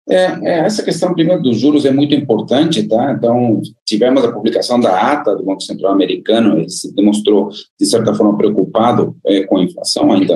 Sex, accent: male, Brazilian